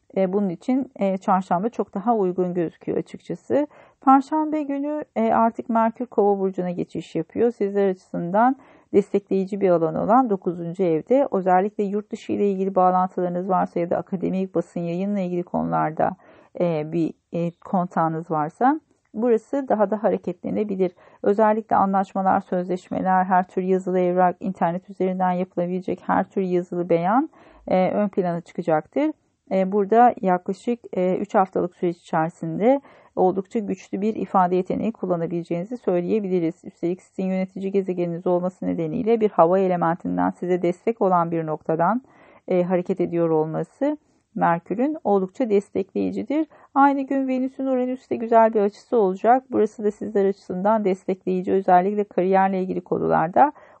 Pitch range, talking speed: 180-225 Hz, 125 wpm